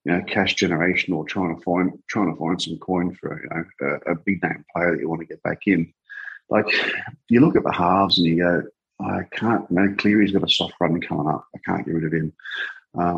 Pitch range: 85-100 Hz